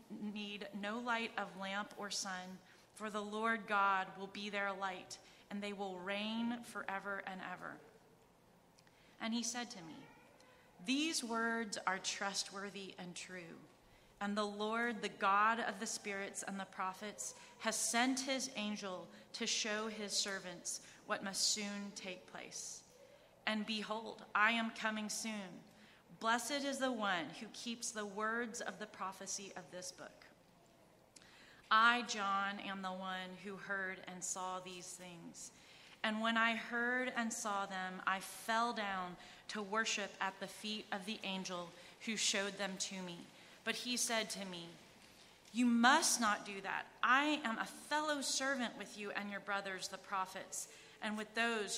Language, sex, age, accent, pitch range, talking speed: English, female, 30-49, American, 190-225 Hz, 160 wpm